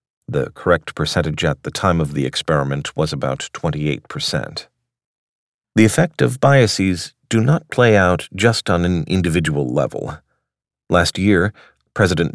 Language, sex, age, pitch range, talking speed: English, male, 40-59, 75-100 Hz, 135 wpm